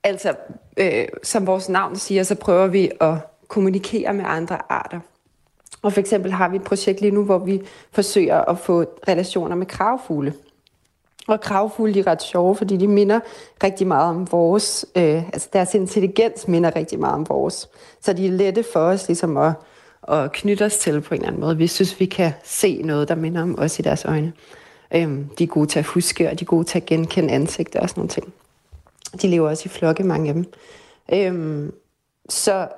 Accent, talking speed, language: native, 200 wpm, Danish